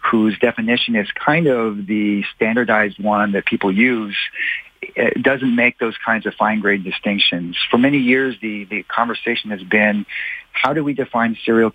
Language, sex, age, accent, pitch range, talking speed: English, male, 50-69, American, 105-120 Hz, 165 wpm